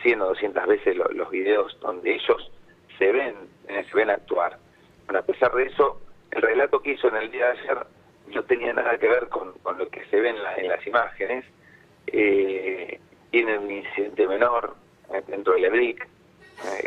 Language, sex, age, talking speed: Spanish, male, 40-59, 195 wpm